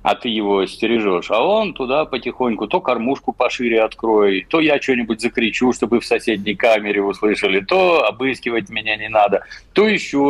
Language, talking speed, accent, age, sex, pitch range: Russian, 165 wpm, native, 50-69, male, 95-130 Hz